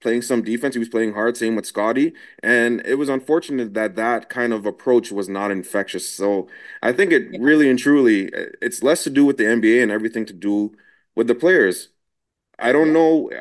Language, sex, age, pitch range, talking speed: English, male, 20-39, 100-130 Hz, 205 wpm